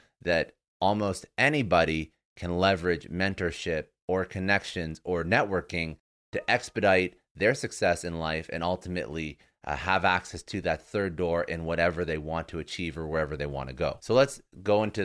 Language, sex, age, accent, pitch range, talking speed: English, male, 30-49, American, 80-95 Hz, 165 wpm